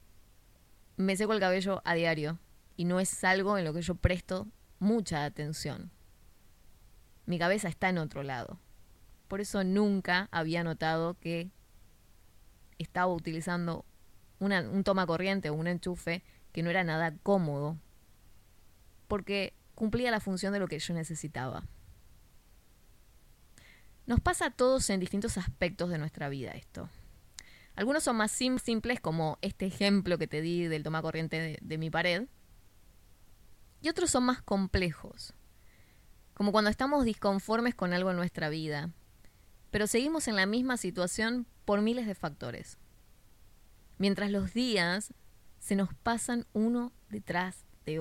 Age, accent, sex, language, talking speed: 20-39, Argentinian, female, Spanish, 140 wpm